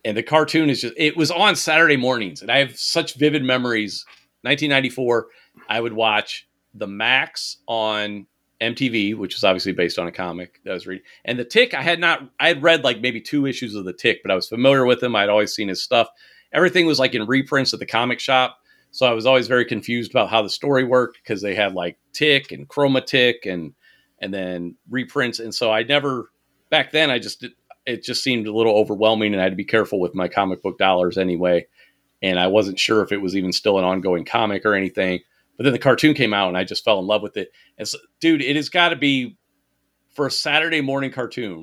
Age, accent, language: 40-59, American, English